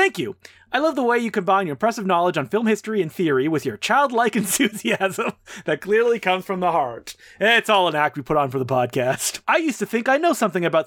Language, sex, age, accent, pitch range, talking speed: English, male, 30-49, American, 175-240 Hz, 245 wpm